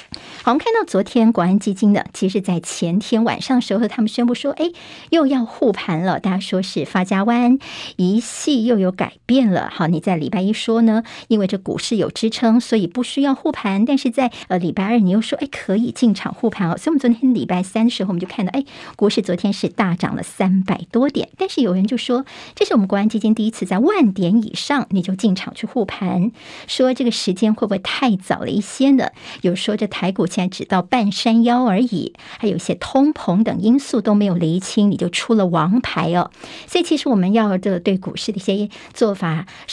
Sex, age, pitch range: male, 50-69, 190-240 Hz